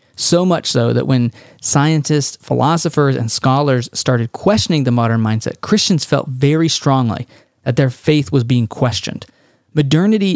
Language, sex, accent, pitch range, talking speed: English, male, American, 125-150 Hz, 145 wpm